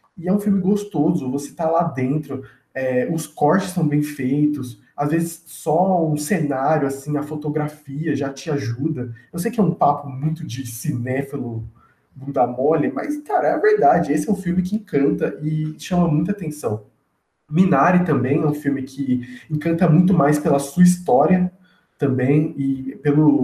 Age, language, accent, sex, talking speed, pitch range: 20-39, Portuguese, Brazilian, male, 175 wpm, 135-165 Hz